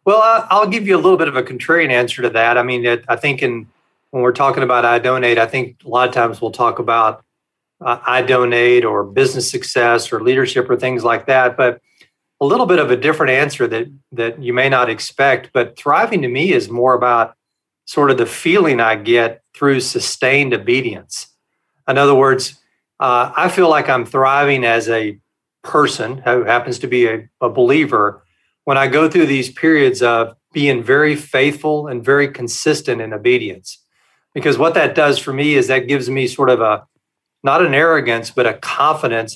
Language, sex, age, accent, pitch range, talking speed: English, male, 40-59, American, 120-140 Hz, 195 wpm